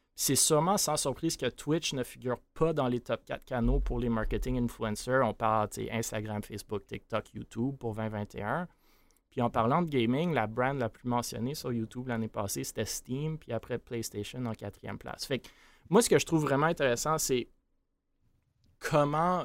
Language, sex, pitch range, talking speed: French, male, 115-135 Hz, 190 wpm